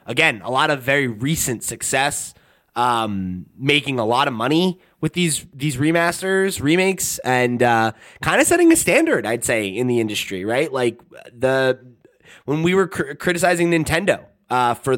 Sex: male